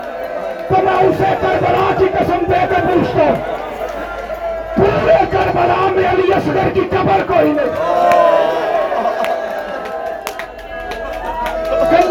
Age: 40-59